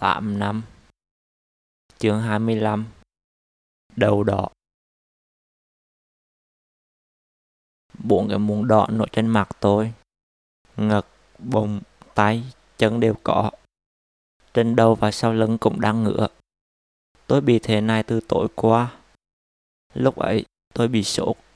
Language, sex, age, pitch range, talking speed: Vietnamese, male, 20-39, 105-120 Hz, 110 wpm